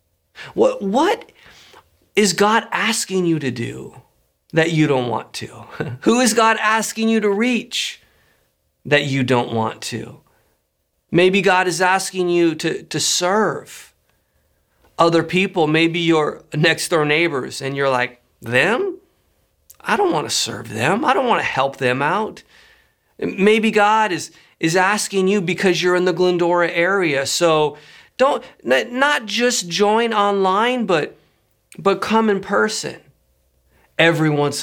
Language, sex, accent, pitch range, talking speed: English, male, American, 155-215 Hz, 140 wpm